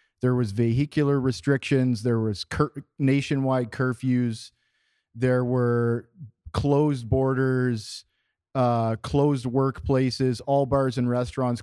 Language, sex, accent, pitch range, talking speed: English, male, American, 115-140 Hz, 100 wpm